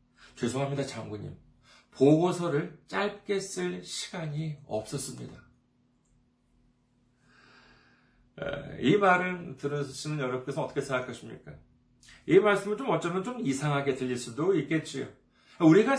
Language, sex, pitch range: Korean, male, 125-190 Hz